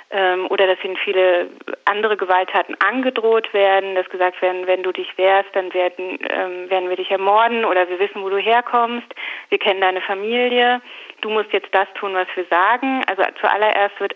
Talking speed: 180 wpm